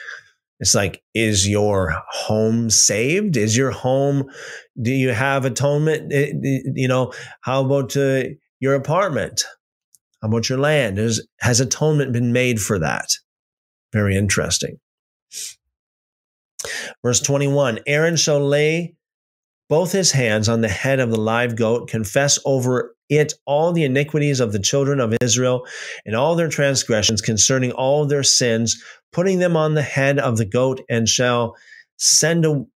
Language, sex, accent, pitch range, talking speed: English, male, American, 115-145 Hz, 145 wpm